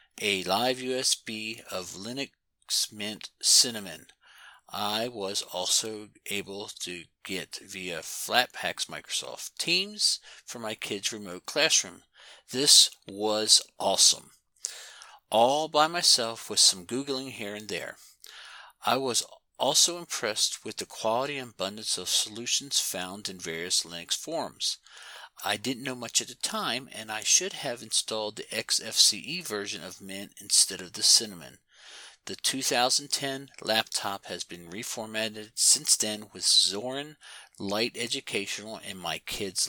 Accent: American